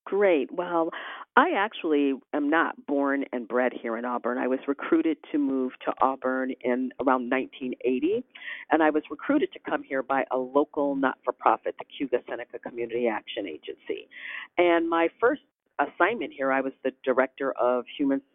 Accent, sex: American, female